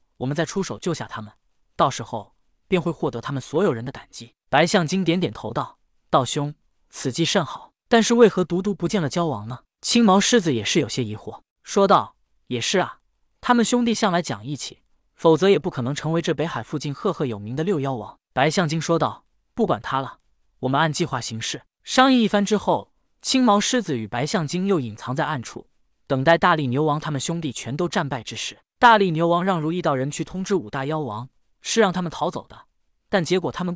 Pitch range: 135-195 Hz